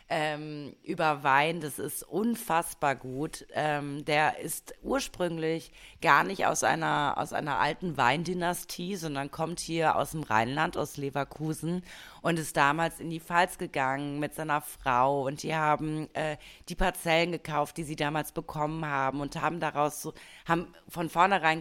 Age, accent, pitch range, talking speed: 30-49, German, 145-170 Hz, 145 wpm